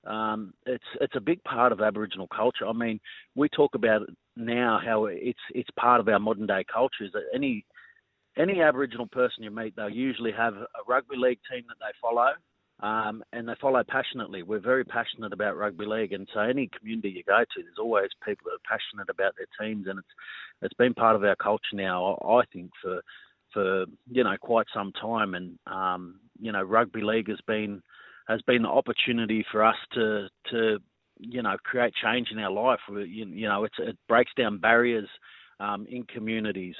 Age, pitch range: 30-49, 105-125 Hz